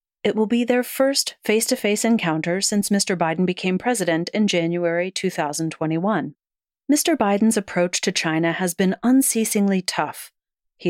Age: 40-59